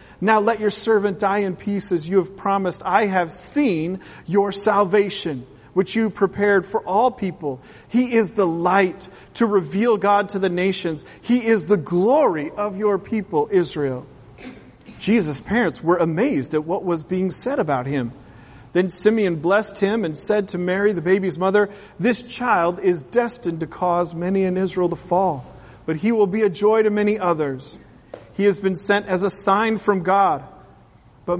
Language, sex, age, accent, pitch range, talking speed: English, male, 40-59, American, 165-205 Hz, 175 wpm